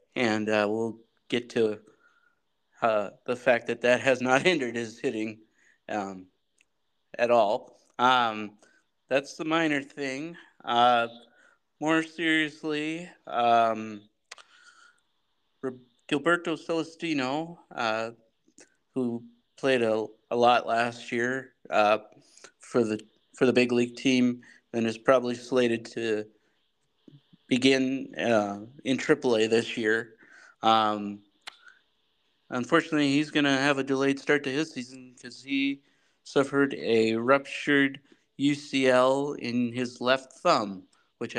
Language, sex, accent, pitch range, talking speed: English, male, American, 115-145 Hz, 115 wpm